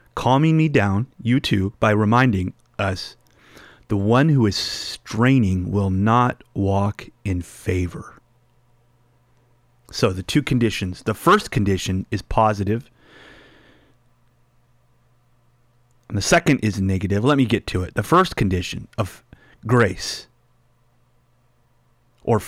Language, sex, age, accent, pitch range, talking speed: English, male, 30-49, American, 110-130 Hz, 115 wpm